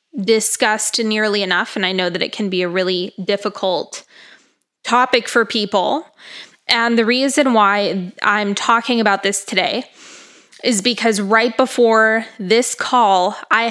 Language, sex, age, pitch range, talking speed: English, female, 20-39, 200-235 Hz, 140 wpm